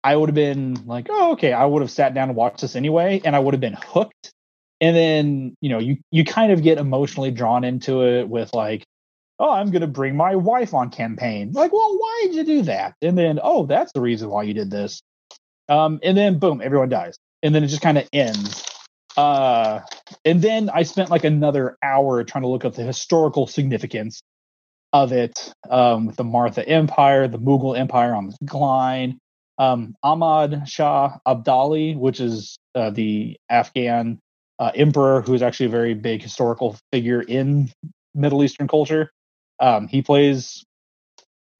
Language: English